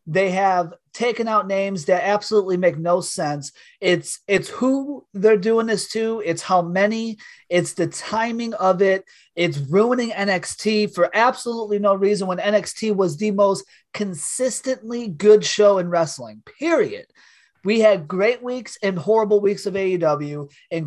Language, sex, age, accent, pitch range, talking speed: English, male, 30-49, American, 170-215 Hz, 150 wpm